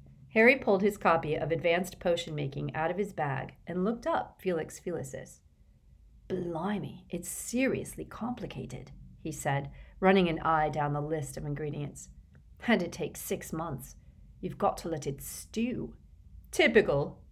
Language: English